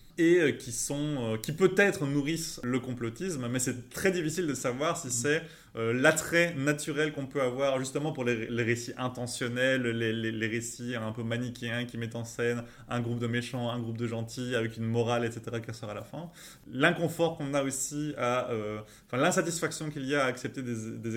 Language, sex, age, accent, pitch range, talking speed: French, male, 20-39, French, 120-150 Hz, 195 wpm